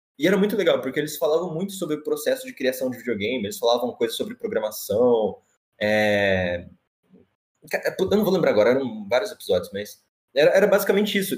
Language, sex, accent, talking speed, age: Portuguese, male, Brazilian, 180 wpm, 20-39